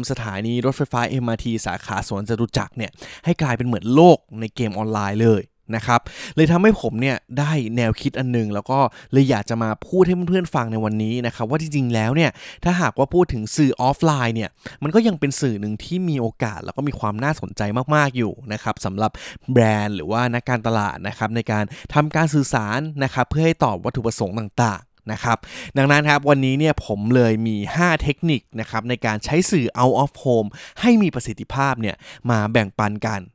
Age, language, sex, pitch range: 20-39, Thai, male, 110-145 Hz